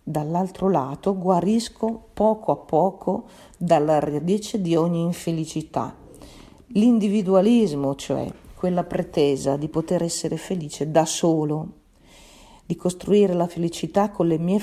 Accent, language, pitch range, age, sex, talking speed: native, Italian, 155-195 Hz, 50-69, female, 115 wpm